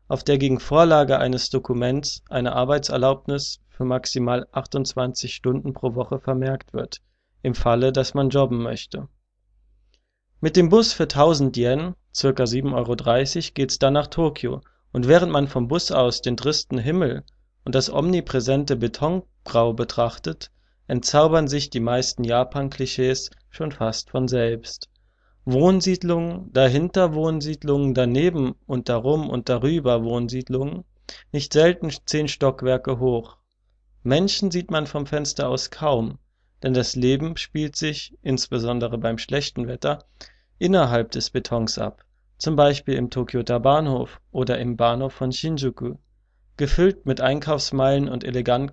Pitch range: 120-145 Hz